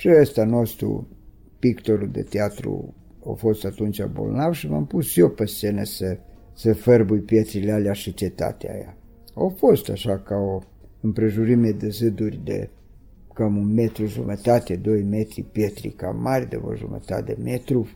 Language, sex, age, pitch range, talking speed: Romanian, male, 50-69, 105-130 Hz, 155 wpm